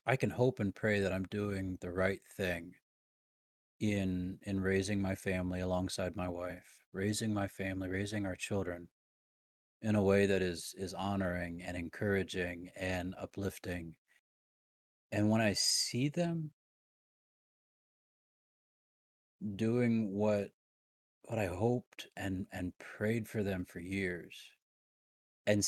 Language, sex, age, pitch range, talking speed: English, male, 30-49, 90-110 Hz, 125 wpm